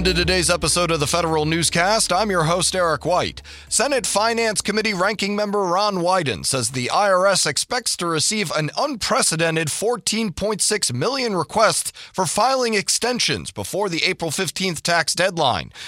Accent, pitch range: American, 150-195 Hz